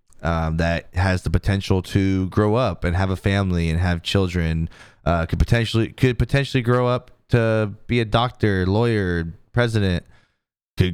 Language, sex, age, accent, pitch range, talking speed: English, male, 20-39, American, 90-115 Hz, 160 wpm